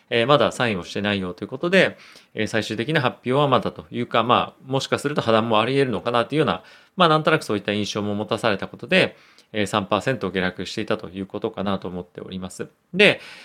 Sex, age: male, 30-49